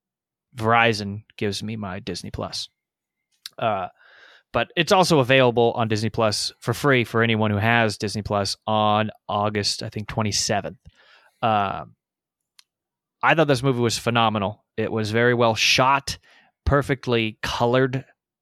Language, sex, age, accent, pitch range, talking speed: English, male, 20-39, American, 110-130 Hz, 135 wpm